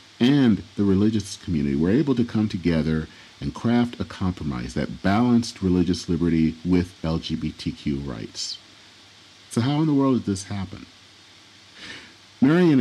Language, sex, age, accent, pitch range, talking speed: English, male, 50-69, American, 85-110 Hz, 135 wpm